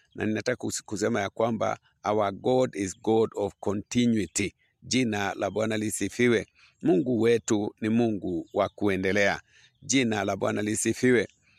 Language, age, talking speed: English, 50-69, 130 wpm